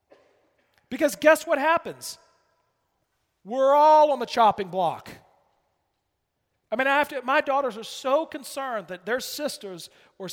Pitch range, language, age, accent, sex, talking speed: 205-300 Hz, English, 40-59, American, male, 140 wpm